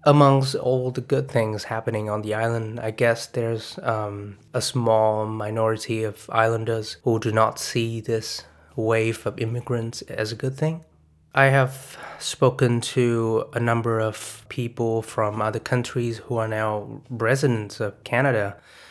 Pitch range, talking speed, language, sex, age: 110-125 Hz, 150 wpm, English, male, 20-39